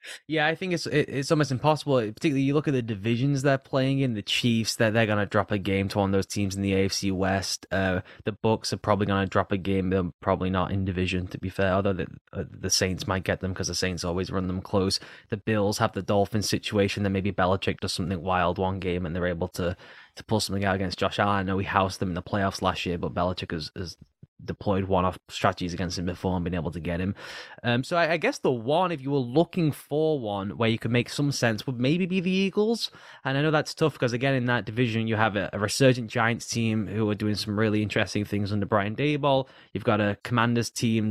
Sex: male